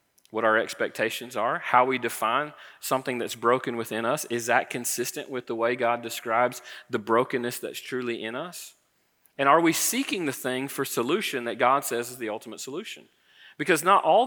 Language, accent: English, American